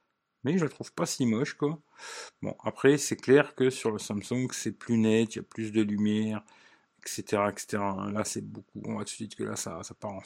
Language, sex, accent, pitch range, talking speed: French, male, French, 110-135 Hz, 240 wpm